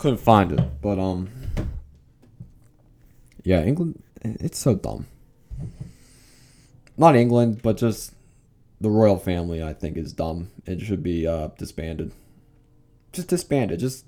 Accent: American